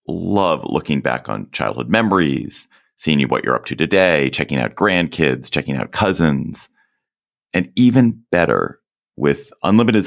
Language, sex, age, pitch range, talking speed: English, male, 30-49, 65-90 Hz, 145 wpm